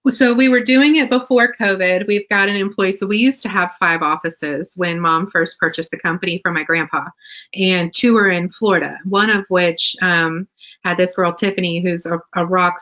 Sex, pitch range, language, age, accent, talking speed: female, 170-200 Hz, English, 30-49, American, 205 wpm